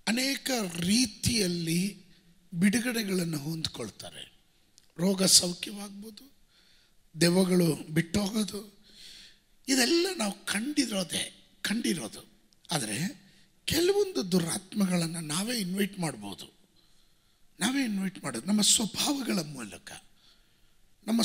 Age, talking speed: 50-69, 75 wpm